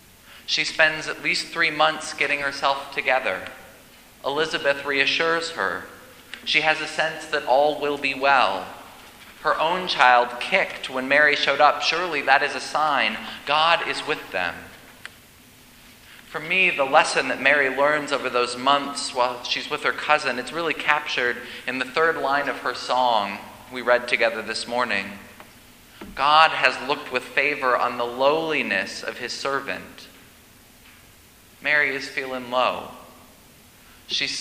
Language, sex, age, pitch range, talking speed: English, male, 30-49, 125-150 Hz, 145 wpm